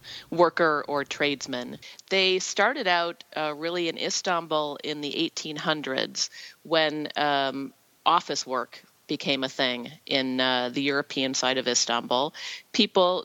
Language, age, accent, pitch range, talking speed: English, 40-59, American, 140-180 Hz, 125 wpm